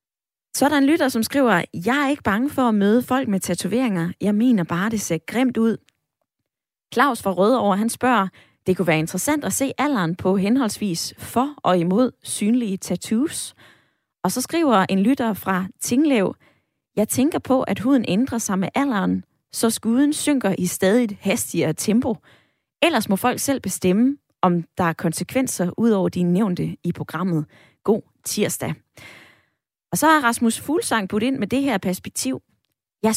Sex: female